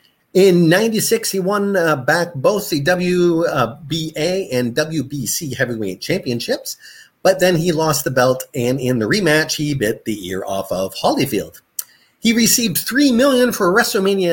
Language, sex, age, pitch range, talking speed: English, male, 30-49, 120-170 Hz, 155 wpm